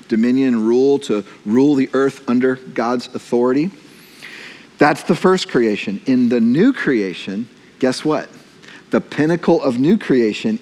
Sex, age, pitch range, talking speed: male, 50-69, 145-215 Hz, 135 wpm